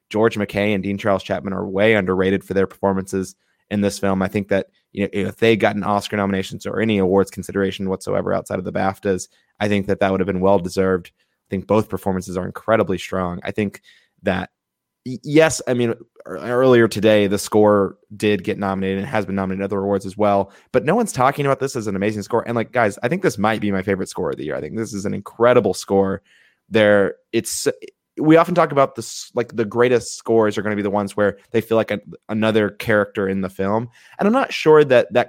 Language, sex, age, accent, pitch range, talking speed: English, male, 20-39, American, 100-115 Hz, 230 wpm